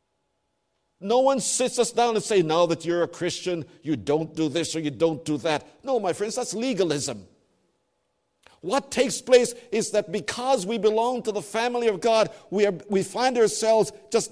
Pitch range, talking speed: 140-215 Hz, 185 wpm